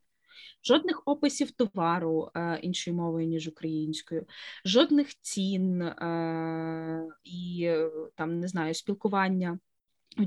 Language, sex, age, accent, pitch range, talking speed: Ukrainian, female, 20-39, native, 165-200 Hz, 100 wpm